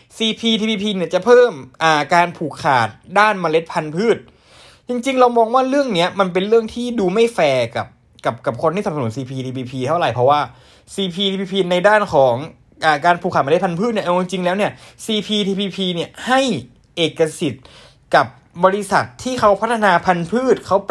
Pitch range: 155-225 Hz